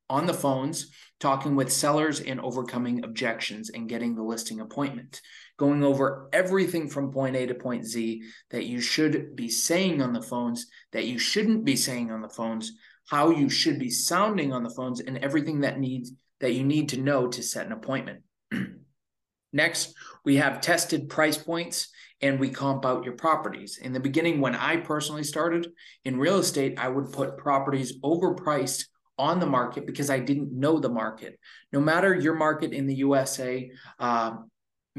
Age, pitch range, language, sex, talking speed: 20-39, 120-150 Hz, English, male, 180 wpm